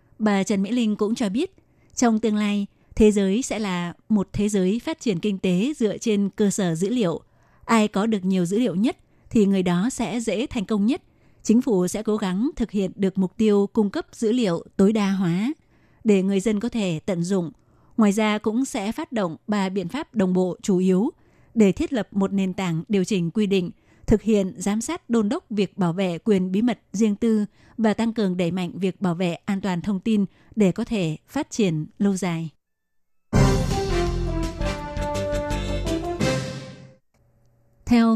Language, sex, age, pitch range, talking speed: Vietnamese, female, 20-39, 185-225 Hz, 195 wpm